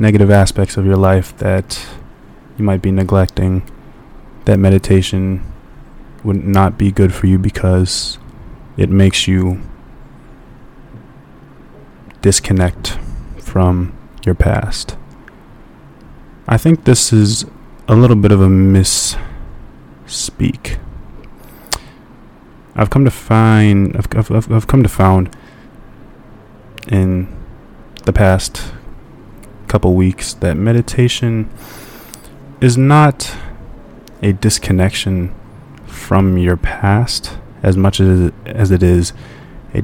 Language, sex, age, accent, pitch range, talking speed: English, male, 20-39, American, 95-110 Hz, 100 wpm